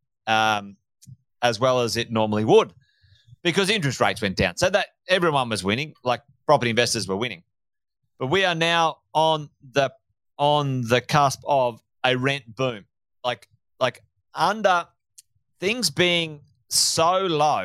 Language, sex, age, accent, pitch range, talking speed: English, male, 30-49, Australian, 115-150 Hz, 145 wpm